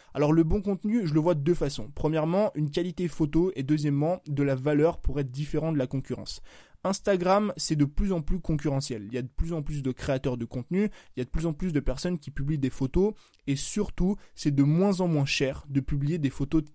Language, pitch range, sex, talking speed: French, 140-175 Hz, male, 245 wpm